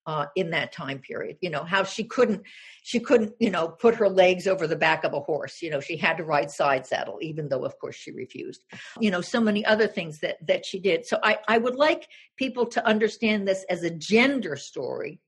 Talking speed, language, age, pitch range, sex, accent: 235 wpm, English, 50-69, 190-235 Hz, female, American